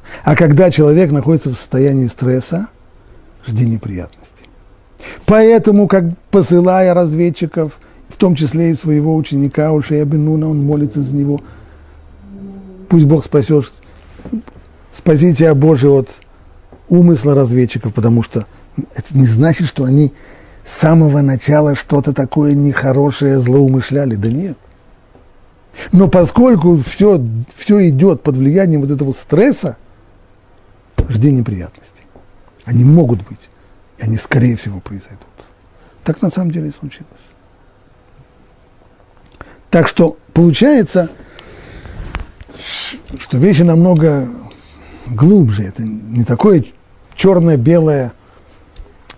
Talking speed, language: 105 wpm, Russian